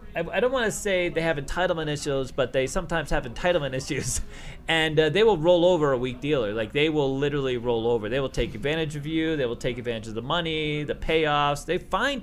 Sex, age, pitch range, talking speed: male, 30-49, 130-170 Hz, 230 wpm